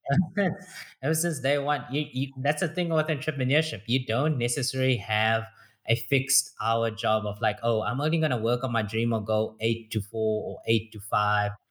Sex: male